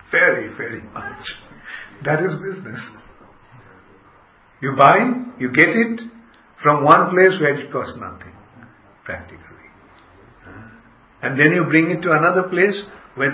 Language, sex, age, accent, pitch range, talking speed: English, male, 50-69, Indian, 110-145 Hz, 125 wpm